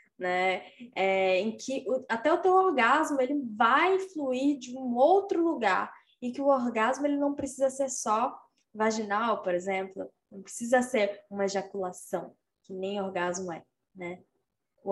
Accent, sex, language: Brazilian, female, Portuguese